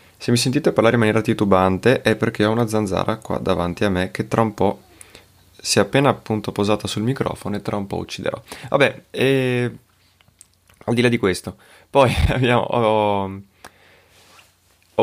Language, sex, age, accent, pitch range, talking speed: Italian, male, 20-39, native, 95-110 Hz, 170 wpm